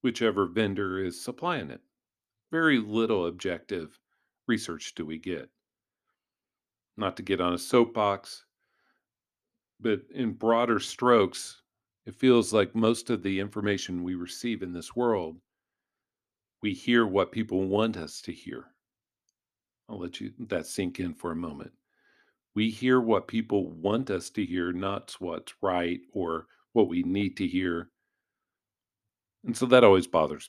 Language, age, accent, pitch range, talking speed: English, 50-69, American, 95-115 Hz, 140 wpm